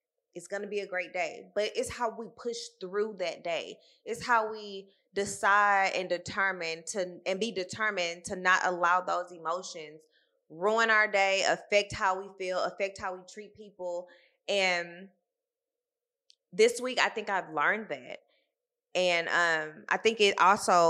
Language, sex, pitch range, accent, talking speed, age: English, female, 170-215 Hz, American, 160 wpm, 20-39